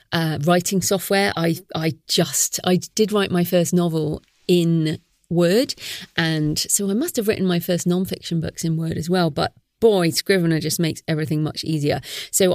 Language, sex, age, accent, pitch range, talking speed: English, female, 30-49, British, 165-215 Hz, 175 wpm